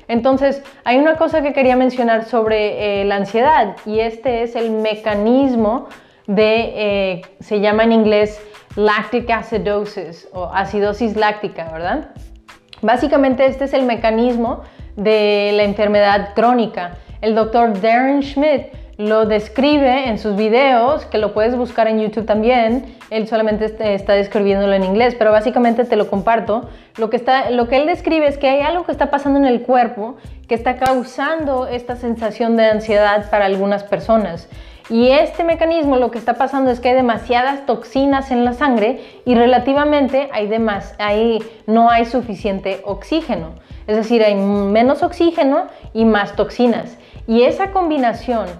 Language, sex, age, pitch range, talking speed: Spanish, female, 20-39, 210-260 Hz, 155 wpm